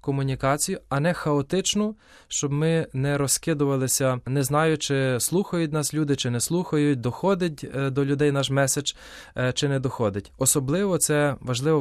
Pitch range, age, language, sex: 130-160 Hz, 20-39, Ukrainian, male